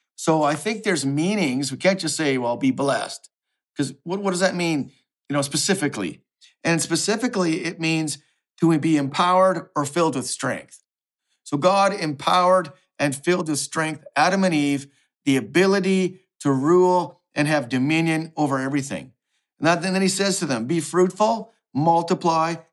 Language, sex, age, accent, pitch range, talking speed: English, male, 50-69, American, 145-180 Hz, 160 wpm